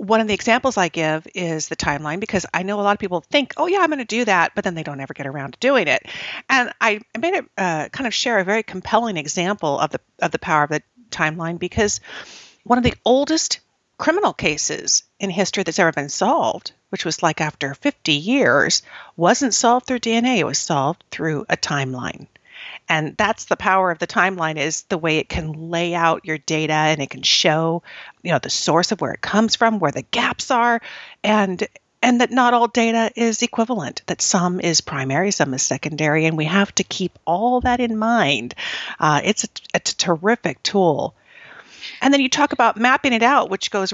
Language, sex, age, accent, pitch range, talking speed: English, female, 50-69, American, 165-230 Hz, 215 wpm